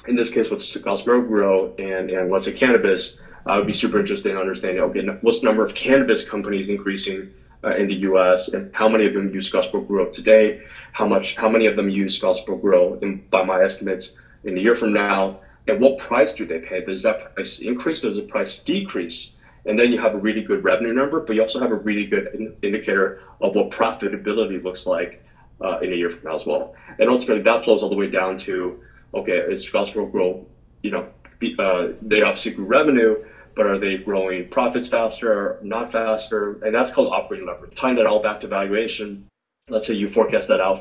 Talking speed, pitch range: 220 wpm, 95-110 Hz